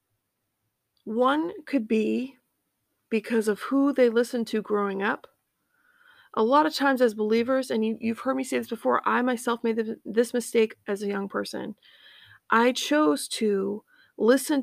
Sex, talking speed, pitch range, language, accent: female, 150 wpm, 215-265 Hz, English, American